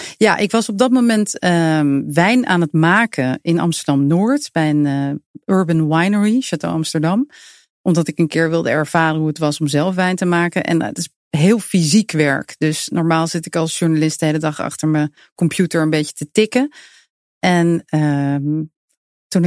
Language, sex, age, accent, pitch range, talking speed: English, female, 40-59, Dutch, 155-185 Hz, 185 wpm